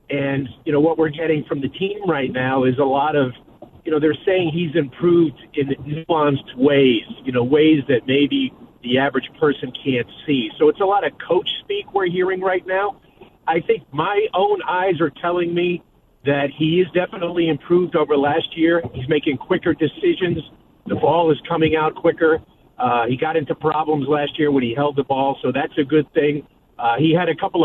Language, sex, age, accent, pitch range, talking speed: English, male, 50-69, American, 140-175 Hz, 200 wpm